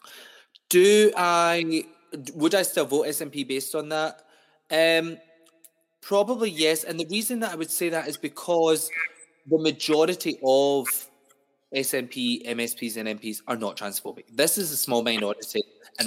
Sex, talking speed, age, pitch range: male, 145 wpm, 20-39, 120-160 Hz